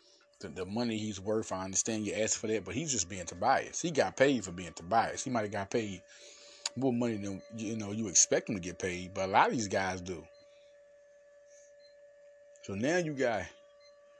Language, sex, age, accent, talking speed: English, male, 30-49, American, 205 wpm